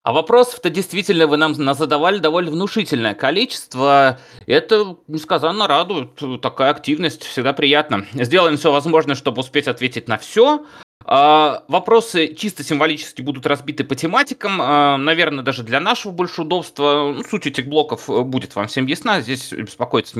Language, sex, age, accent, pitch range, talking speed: Russian, male, 30-49, native, 145-205 Hz, 135 wpm